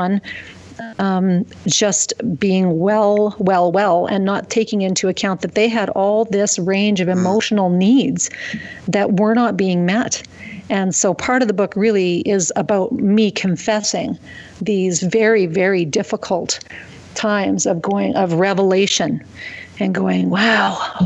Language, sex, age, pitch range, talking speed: English, female, 40-59, 180-215 Hz, 135 wpm